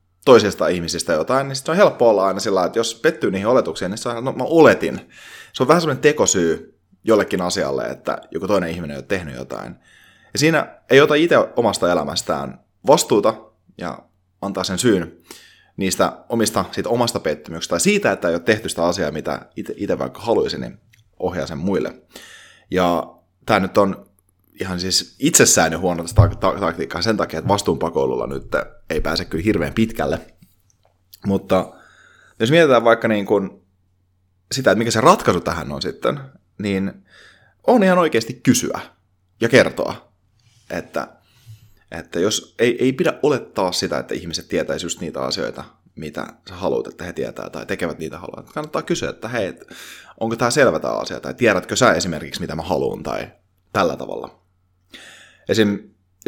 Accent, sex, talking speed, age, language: native, male, 165 wpm, 30-49, Finnish